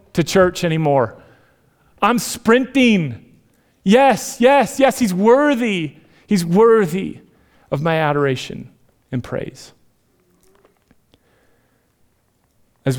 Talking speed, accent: 85 wpm, American